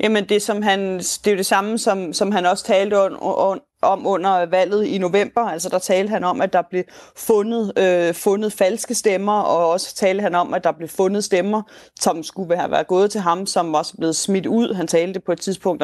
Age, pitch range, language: 30-49, 175-210 Hz, Danish